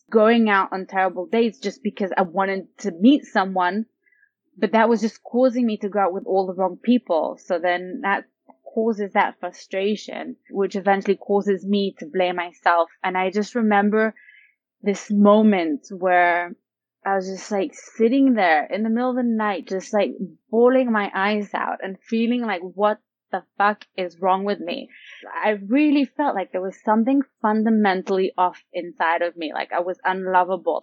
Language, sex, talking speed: English, female, 175 wpm